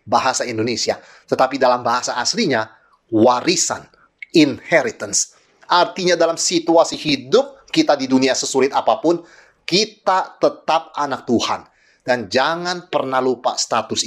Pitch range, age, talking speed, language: 125-180 Hz, 30-49, 110 wpm, Indonesian